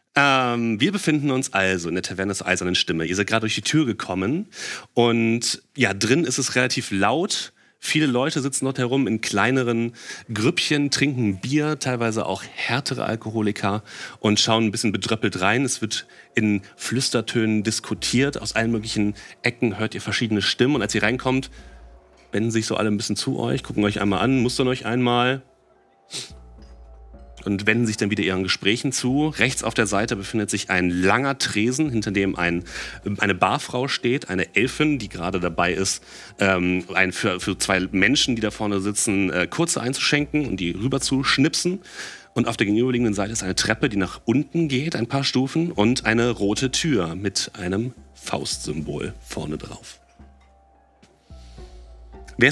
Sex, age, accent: male, 30-49, German